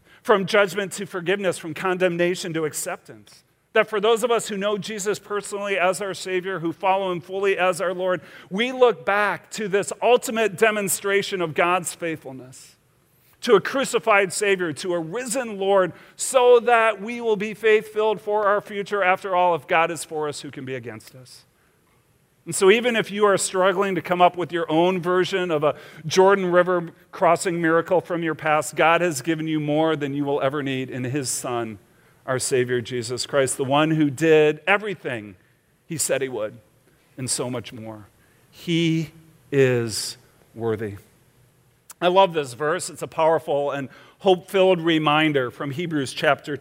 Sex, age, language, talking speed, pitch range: male, 40-59, English, 175 wpm, 140-195 Hz